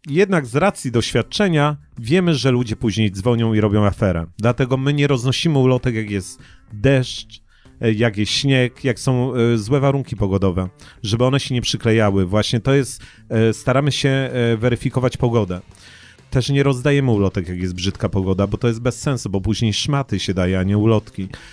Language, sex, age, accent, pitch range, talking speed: Polish, male, 40-59, native, 105-150 Hz, 170 wpm